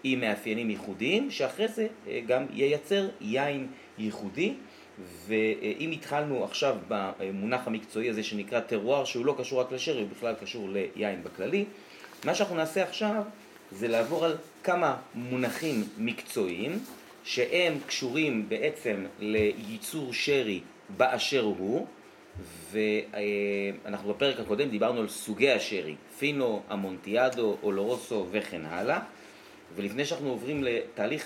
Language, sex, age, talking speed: Hebrew, male, 30-49, 115 wpm